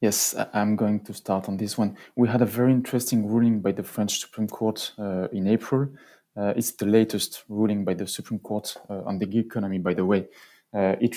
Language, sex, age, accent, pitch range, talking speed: English, male, 30-49, French, 95-110 Hz, 220 wpm